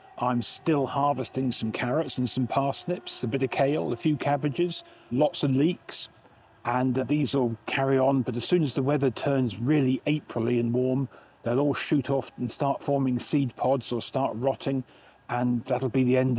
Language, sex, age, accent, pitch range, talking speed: English, male, 40-59, British, 120-140 Hz, 185 wpm